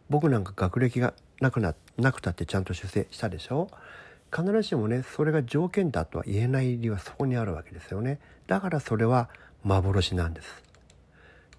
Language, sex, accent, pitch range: Japanese, male, native, 95-125 Hz